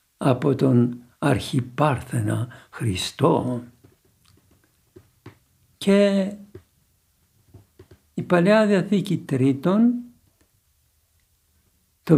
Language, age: Greek, 60-79